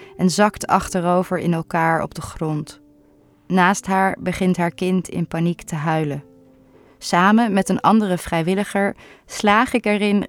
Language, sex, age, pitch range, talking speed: Dutch, female, 20-39, 165-195 Hz, 145 wpm